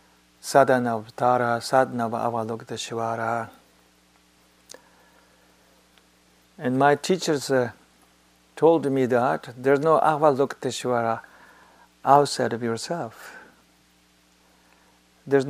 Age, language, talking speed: 50-69, English, 75 wpm